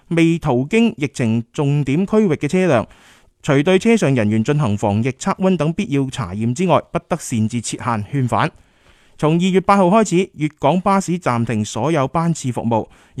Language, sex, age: Chinese, male, 20-39